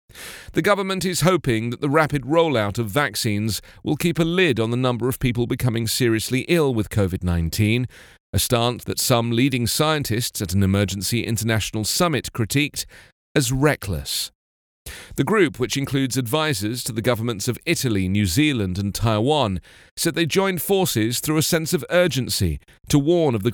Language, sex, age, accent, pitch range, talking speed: English, male, 40-59, British, 105-140 Hz, 165 wpm